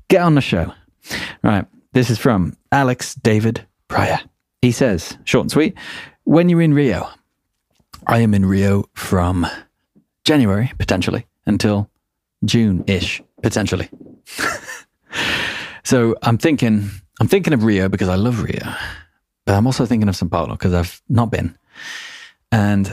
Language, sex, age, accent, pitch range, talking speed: English, male, 30-49, British, 95-120 Hz, 140 wpm